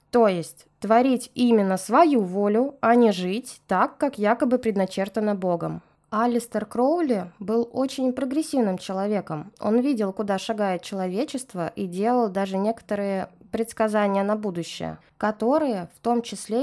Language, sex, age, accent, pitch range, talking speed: Russian, female, 20-39, native, 190-245 Hz, 130 wpm